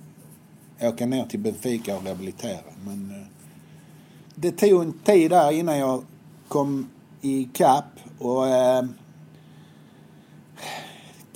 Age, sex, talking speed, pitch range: 60-79, male, 100 wpm, 120-150 Hz